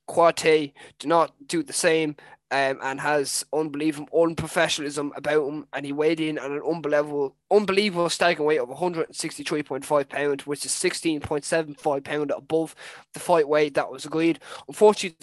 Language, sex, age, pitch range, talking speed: English, male, 20-39, 140-165 Hz, 150 wpm